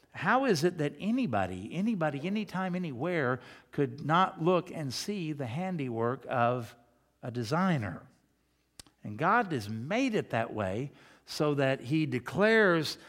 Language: English